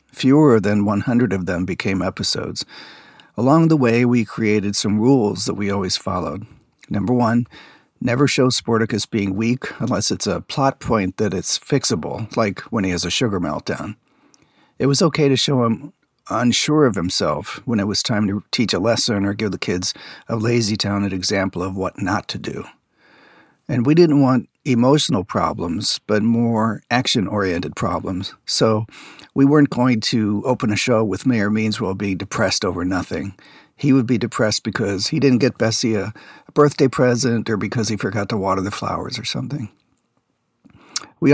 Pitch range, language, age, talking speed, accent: 100-130 Hz, English, 50-69, 170 wpm, American